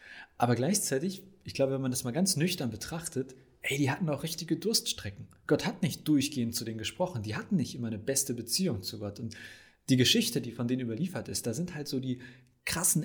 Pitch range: 110-140 Hz